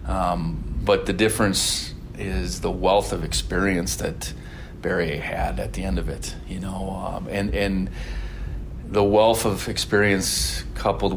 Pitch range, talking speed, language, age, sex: 90-100 Hz, 145 wpm, English, 30-49, male